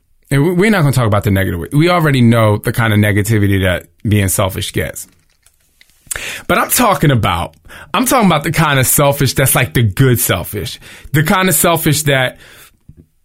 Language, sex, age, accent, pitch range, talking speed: English, male, 20-39, American, 115-170 Hz, 185 wpm